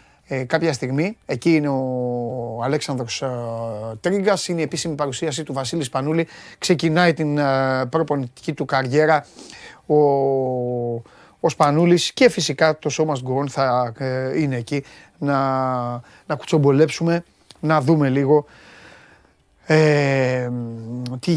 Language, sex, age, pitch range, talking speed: Greek, male, 30-49, 135-180 Hz, 120 wpm